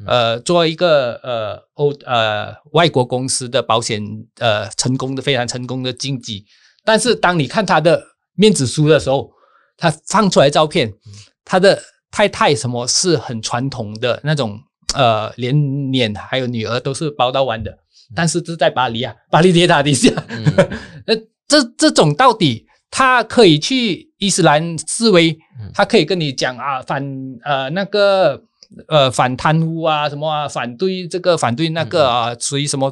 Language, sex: Chinese, male